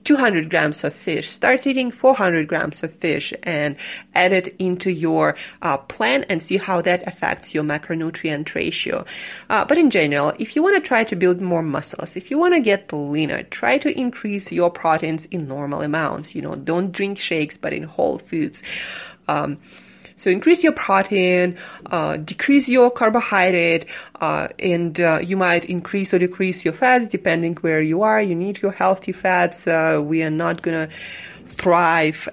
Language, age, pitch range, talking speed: English, 30-49, 165-200 Hz, 180 wpm